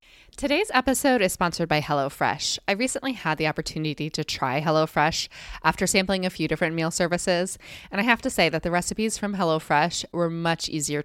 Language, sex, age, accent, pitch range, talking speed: English, female, 20-39, American, 150-180 Hz, 185 wpm